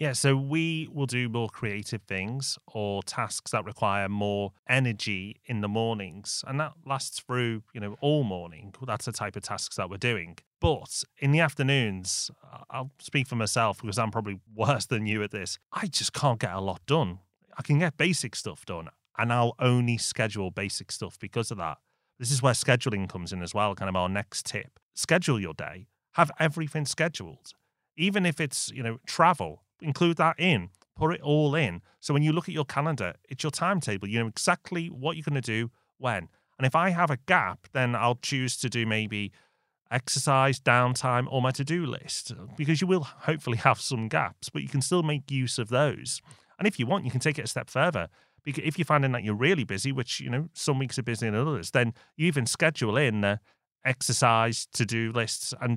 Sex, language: male, English